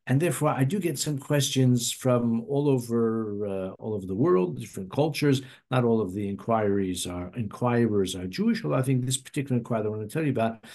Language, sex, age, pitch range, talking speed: English, male, 50-69, 110-135 Hz, 210 wpm